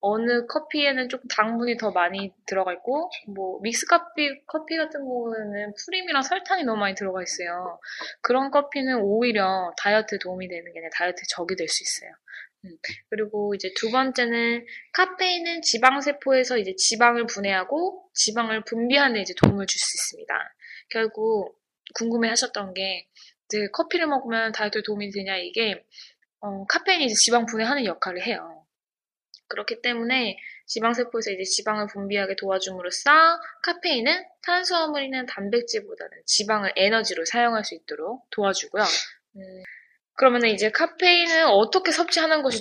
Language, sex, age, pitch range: Korean, female, 20-39, 200-290 Hz